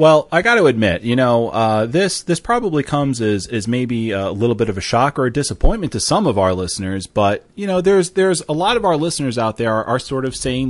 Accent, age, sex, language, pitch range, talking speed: American, 30-49, male, English, 105-145 Hz, 260 wpm